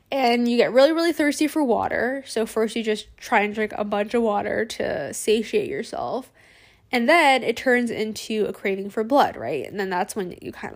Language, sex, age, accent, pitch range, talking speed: English, female, 10-29, American, 210-260 Hz, 210 wpm